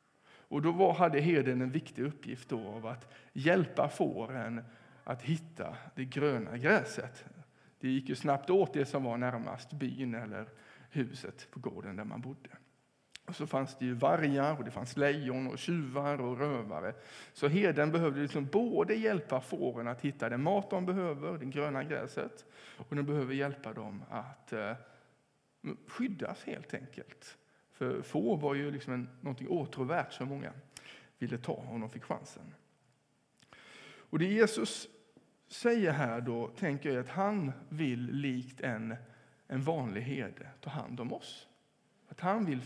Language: English